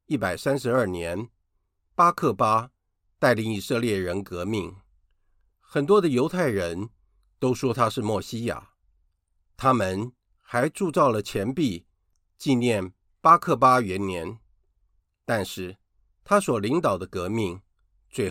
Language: Chinese